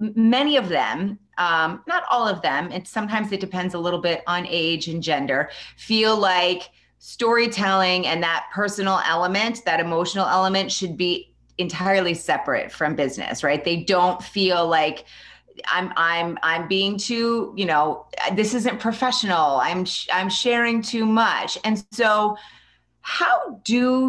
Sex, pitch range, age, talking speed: female, 175-215 Hz, 30-49, 145 wpm